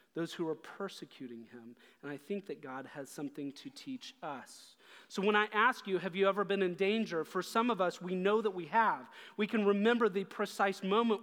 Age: 40-59